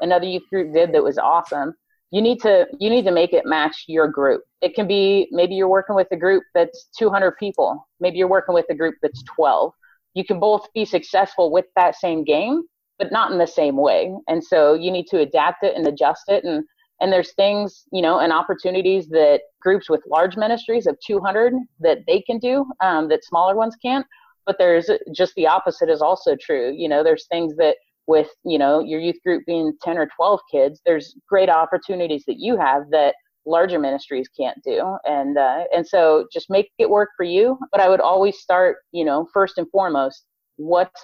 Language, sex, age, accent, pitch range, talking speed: English, female, 30-49, American, 165-235 Hz, 210 wpm